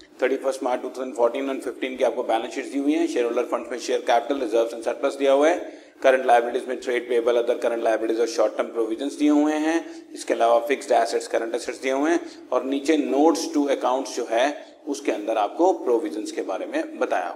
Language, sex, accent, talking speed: Hindi, male, native, 165 wpm